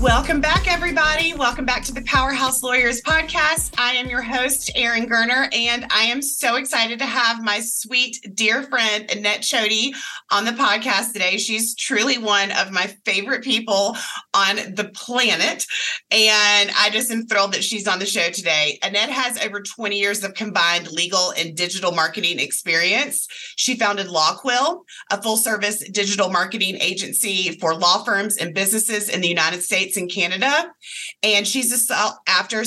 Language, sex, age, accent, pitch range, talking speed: English, female, 30-49, American, 195-245 Hz, 165 wpm